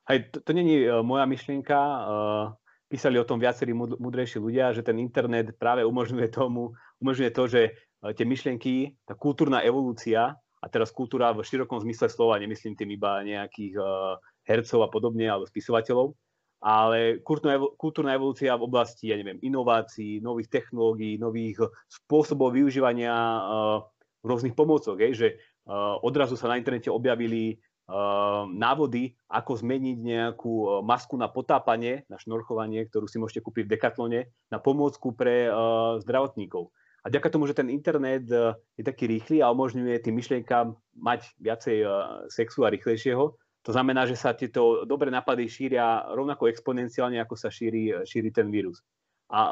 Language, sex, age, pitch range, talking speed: Slovak, male, 30-49, 115-130 Hz, 140 wpm